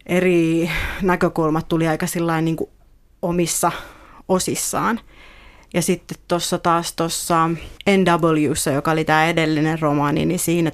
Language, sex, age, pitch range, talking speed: Finnish, female, 30-49, 160-185 Hz, 110 wpm